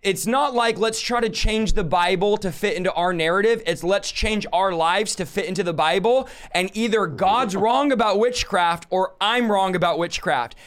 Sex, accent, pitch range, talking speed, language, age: male, American, 180-220 Hz, 195 wpm, English, 20-39